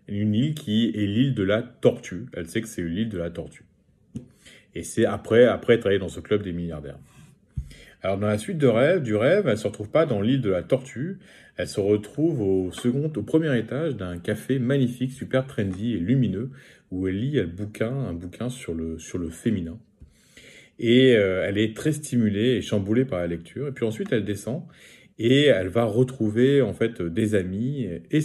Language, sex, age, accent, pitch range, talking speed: French, male, 30-49, French, 90-125 Hz, 205 wpm